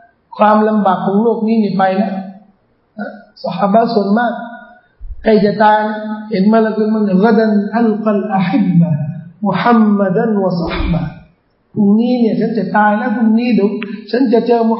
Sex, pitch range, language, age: male, 215-285 Hz, Thai, 50-69